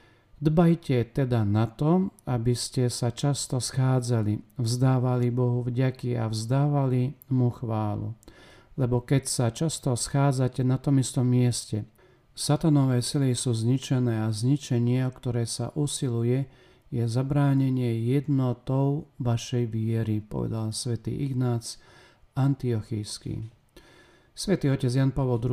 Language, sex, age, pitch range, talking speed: Slovak, male, 50-69, 120-135 Hz, 115 wpm